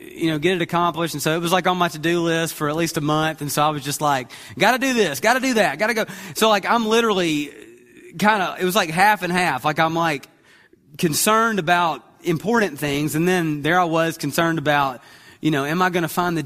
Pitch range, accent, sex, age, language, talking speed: 140-175 Hz, American, male, 30-49, English, 255 wpm